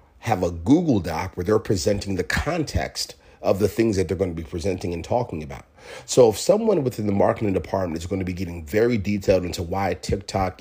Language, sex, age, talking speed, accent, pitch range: English, male, 30-49, 215 wpm, American, 85-105 Hz